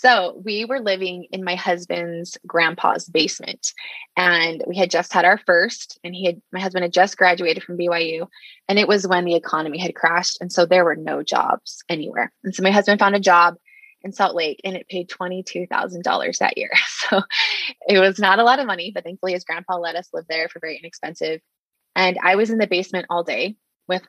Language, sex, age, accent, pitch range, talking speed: English, female, 20-39, American, 175-195 Hz, 210 wpm